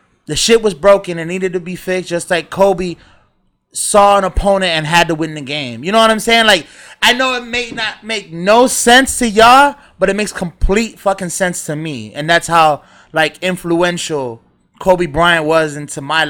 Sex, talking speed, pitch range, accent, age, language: male, 205 wpm, 165-215 Hz, American, 20-39, English